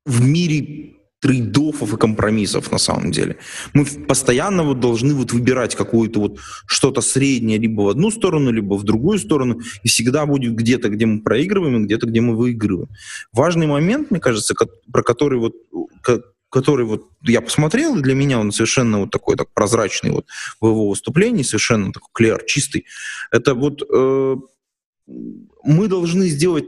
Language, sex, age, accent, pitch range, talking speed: Russian, male, 20-39, native, 115-170 Hz, 165 wpm